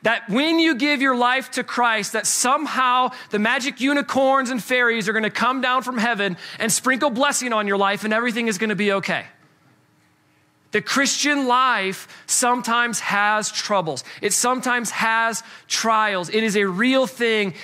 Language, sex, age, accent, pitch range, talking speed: English, male, 30-49, American, 195-260 Hz, 165 wpm